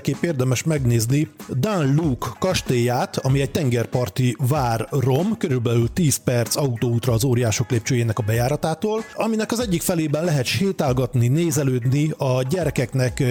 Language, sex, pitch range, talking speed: Hungarian, male, 125-160 Hz, 125 wpm